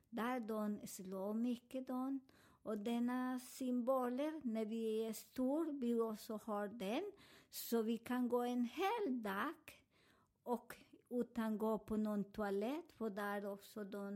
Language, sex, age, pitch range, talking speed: Swedish, male, 50-69, 220-275 Hz, 145 wpm